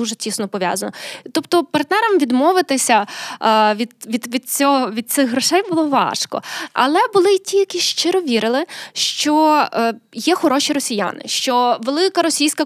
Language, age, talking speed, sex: Ukrainian, 20-39, 145 wpm, female